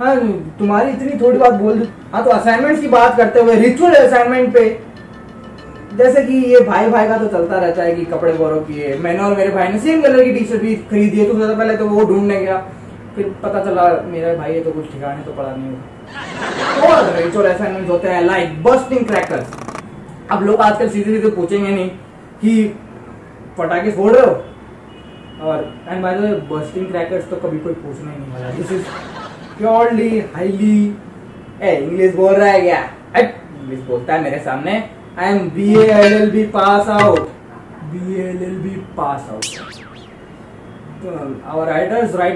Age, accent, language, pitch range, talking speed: 20-39, native, Hindi, 170-230 Hz, 65 wpm